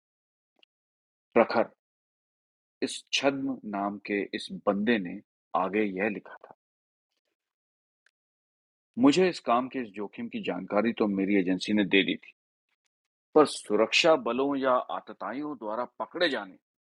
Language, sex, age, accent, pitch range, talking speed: Hindi, male, 40-59, native, 90-120 Hz, 125 wpm